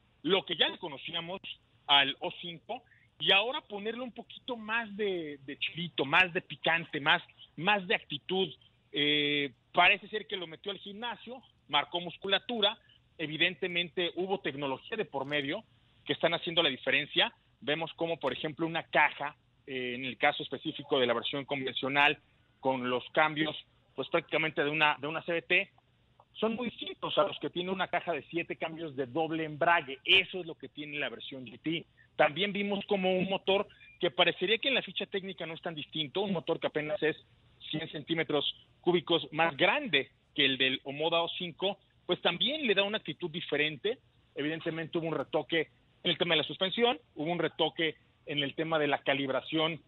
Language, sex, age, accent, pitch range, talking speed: Spanish, male, 40-59, Mexican, 145-185 Hz, 180 wpm